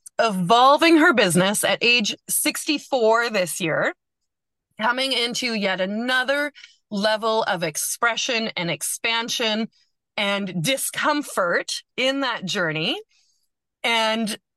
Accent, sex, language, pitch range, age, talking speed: American, female, English, 195-255 Hz, 30-49, 95 wpm